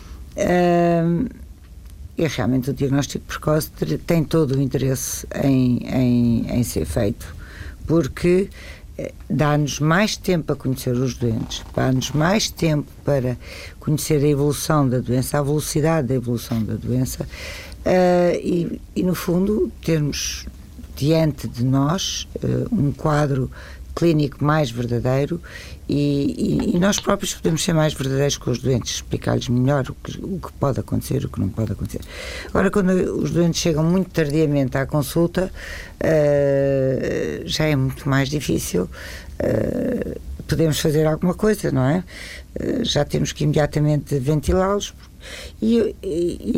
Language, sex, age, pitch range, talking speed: Portuguese, female, 60-79, 120-160 Hz, 135 wpm